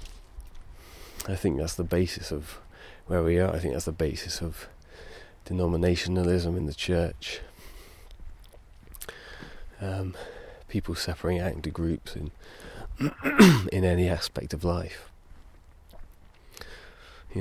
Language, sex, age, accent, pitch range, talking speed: English, male, 30-49, British, 75-90 Hz, 105 wpm